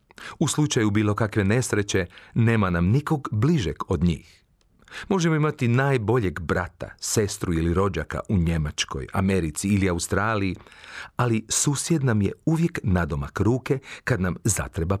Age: 40-59